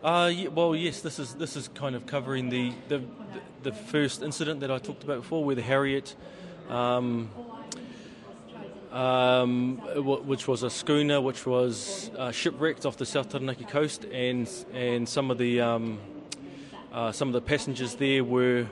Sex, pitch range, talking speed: male, 120-145 Hz, 170 wpm